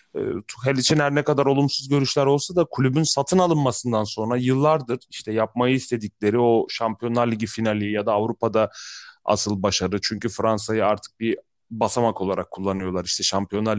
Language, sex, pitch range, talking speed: Turkish, male, 110-150 Hz, 150 wpm